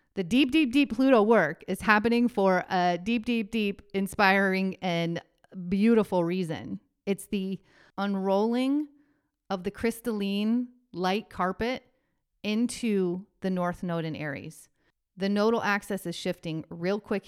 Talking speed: 130 wpm